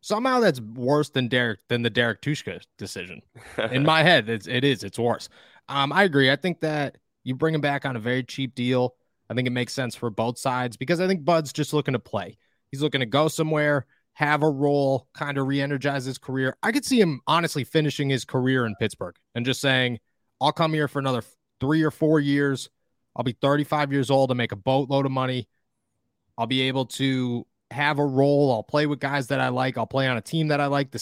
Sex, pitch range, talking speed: male, 120-145 Hz, 225 wpm